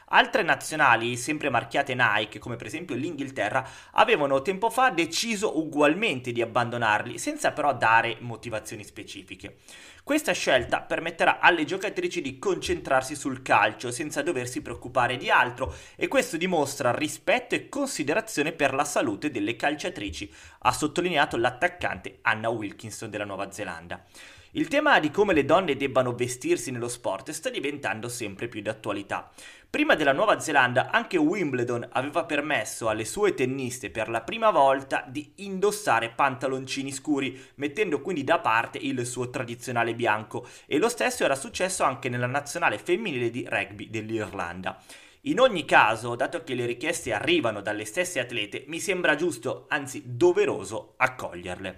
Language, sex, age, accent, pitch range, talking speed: Italian, male, 30-49, native, 115-195 Hz, 145 wpm